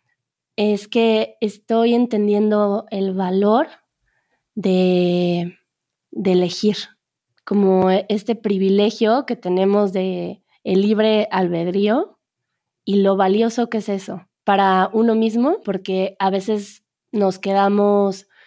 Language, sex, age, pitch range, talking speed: Spanish, female, 20-39, 190-215 Hz, 105 wpm